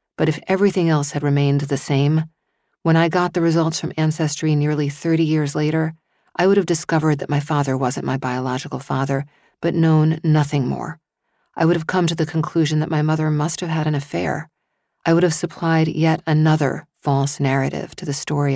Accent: American